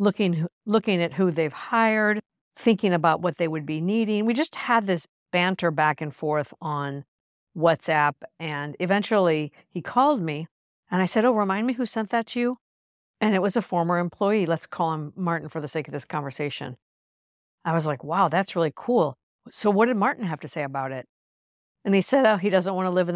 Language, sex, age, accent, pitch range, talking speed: English, female, 50-69, American, 150-210 Hz, 210 wpm